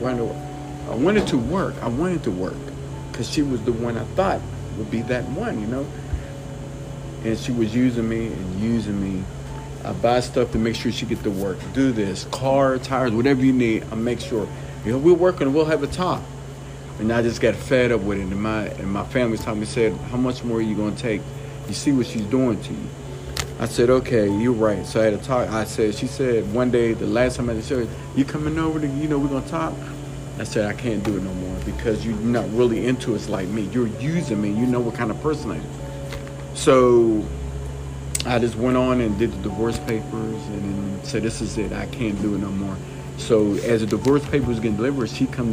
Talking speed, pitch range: 230 wpm, 110-135 Hz